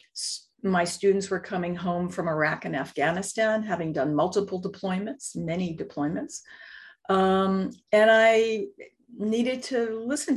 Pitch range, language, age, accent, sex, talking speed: 180-255 Hz, English, 50-69, American, female, 120 wpm